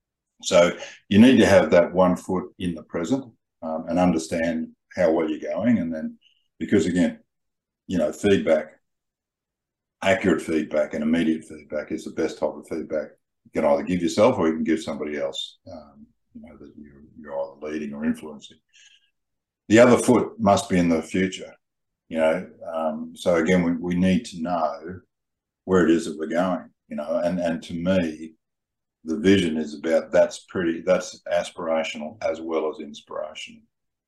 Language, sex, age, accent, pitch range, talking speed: English, male, 50-69, Australian, 80-120 Hz, 175 wpm